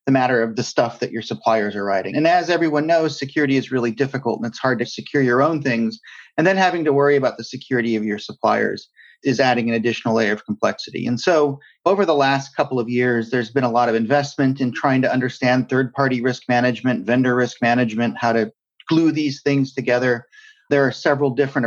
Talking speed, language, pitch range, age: 215 wpm, English, 125-145 Hz, 40-59